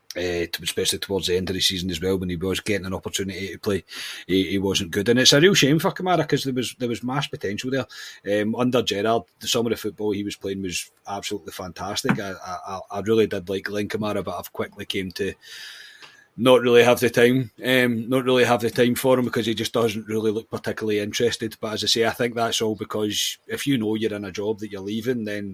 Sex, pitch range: male, 100-120 Hz